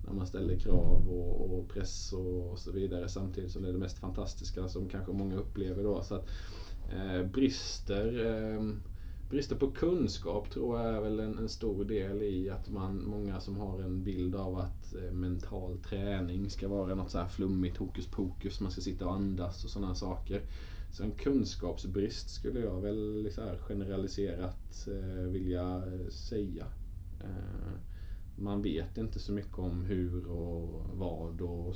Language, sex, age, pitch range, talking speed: Swedish, male, 20-39, 90-100 Hz, 165 wpm